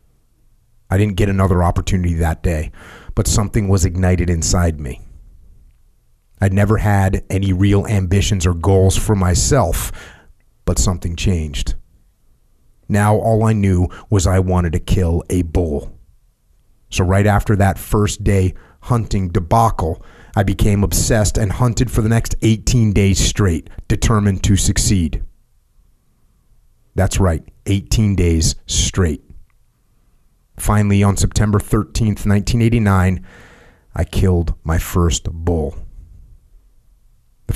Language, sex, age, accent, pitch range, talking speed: English, male, 30-49, American, 90-110 Hz, 120 wpm